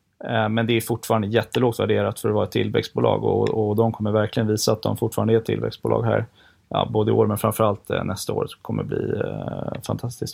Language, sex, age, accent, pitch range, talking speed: Swedish, male, 20-39, native, 110-125 Hz, 210 wpm